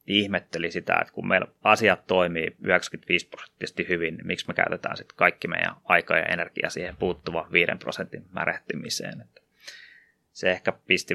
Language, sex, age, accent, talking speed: Finnish, male, 20-39, native, 150 wpm